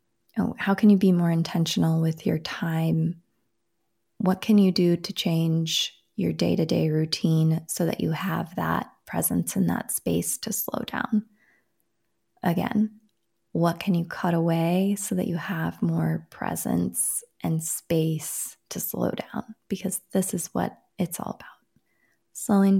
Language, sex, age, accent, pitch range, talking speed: English, female, 20-39, American, 175-215 Hz, 145 wpm